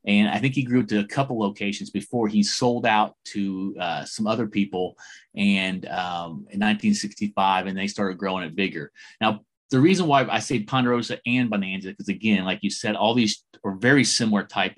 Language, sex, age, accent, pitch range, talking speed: English, male, 30-49, American, 100-120 Hz, 200 wpm